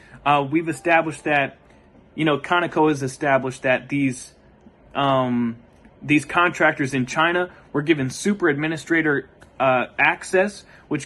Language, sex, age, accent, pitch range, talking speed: English, male, 30-49, American, 140-175 Hz, 125 wpm